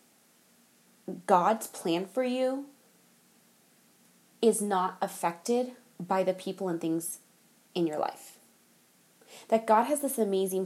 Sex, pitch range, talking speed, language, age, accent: female, 170-220 Hz, 115 wpm, English, 20-39, American